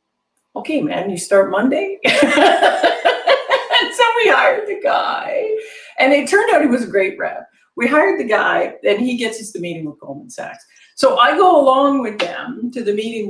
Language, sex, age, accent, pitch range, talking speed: English, female, 50-69, American, 180-270 Hz, 185 wpm